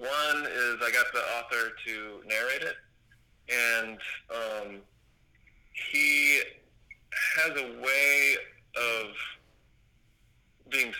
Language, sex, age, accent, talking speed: English, male, 30-49, American, 95 wpm